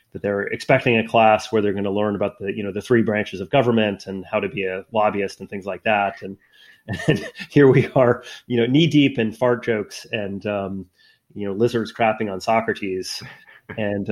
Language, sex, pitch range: English, male, 95-120 Hz